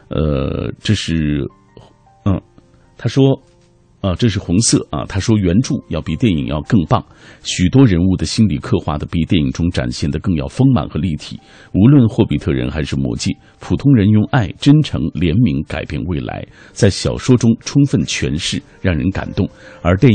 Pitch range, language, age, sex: 80-125 Hz, Chinese, 50-69, male